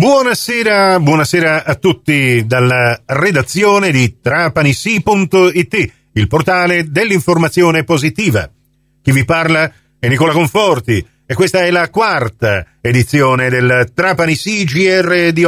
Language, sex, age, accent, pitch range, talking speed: Italian, male, 50-69, native, 130-180 Hz, 110 wpm